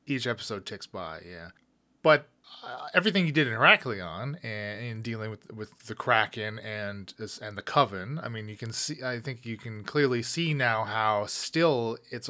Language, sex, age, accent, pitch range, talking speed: English, male, 30-49, American, 105-135 Hz, 185 wpm